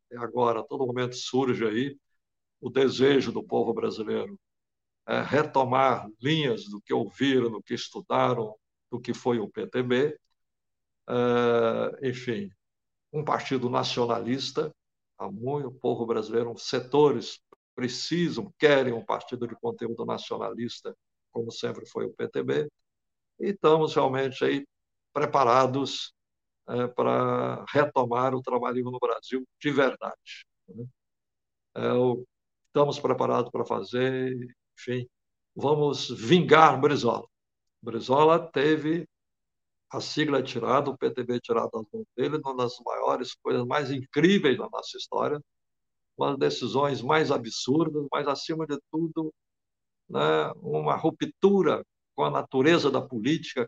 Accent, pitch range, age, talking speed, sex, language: Brazilian, 120-150 Hz, 60-79, 125 wpm, male, Portuguese